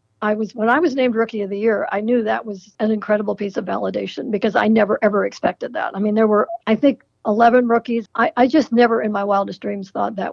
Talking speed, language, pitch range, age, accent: 250 wpm, English, 210-250 Hz, 60-79, American